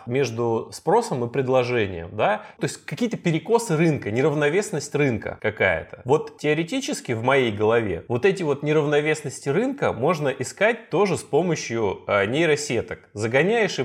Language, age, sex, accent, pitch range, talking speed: Russian, 20-39, male, native, 125-170 Hz, 135 wpm